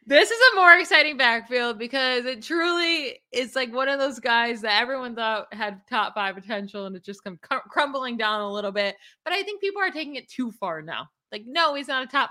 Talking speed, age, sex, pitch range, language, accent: 230 wpm, 20-39, female, 200-265 Hz, English, American